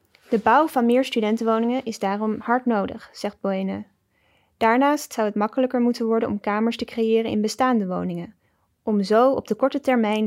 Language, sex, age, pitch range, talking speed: English, female, 10-29, 205-240 Hz, 175 wpm